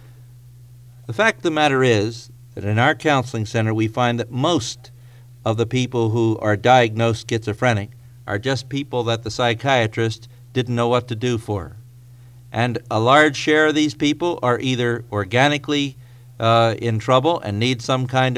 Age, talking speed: 50-69, 165 wpm